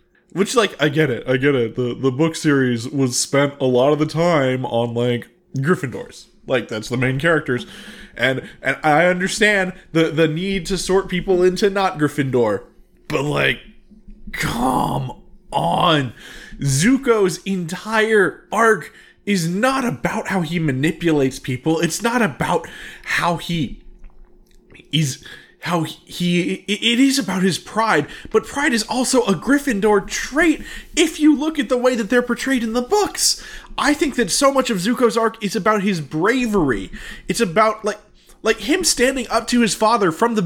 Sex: male